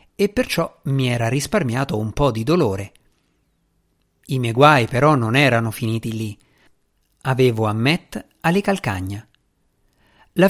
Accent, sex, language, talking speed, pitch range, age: native, male, Italian, 130 wpm, 120-160 Hz, 50-69